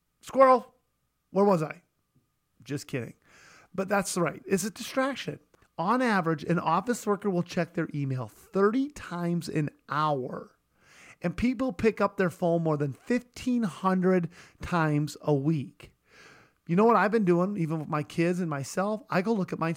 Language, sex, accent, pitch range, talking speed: English, male, American, 155-210 Hz, 165 wpm